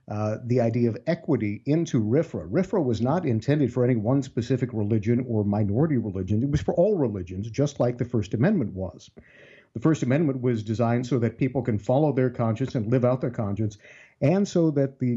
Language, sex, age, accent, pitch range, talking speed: English, male, 50-69, American, 115-140 Hz, 200 wpm